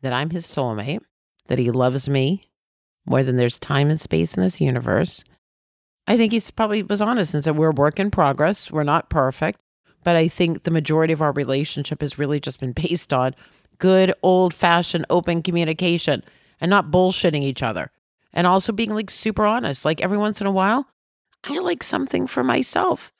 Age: 40-59